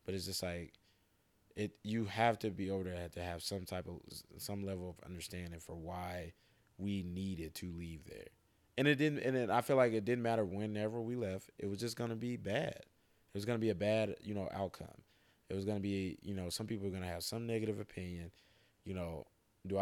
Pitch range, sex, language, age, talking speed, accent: 85-105 Hz, male, English, 20-39, 220 wpm, American